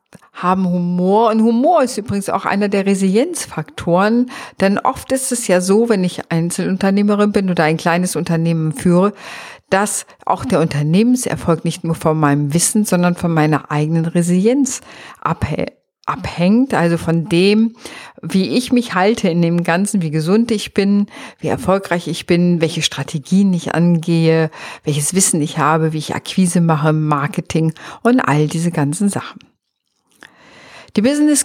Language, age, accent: German, 50-69, German